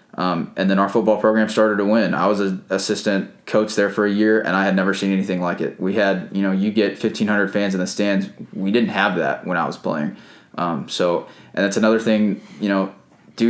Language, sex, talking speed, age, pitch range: English, male, 240 wpm, 20-39, 100-110 Hz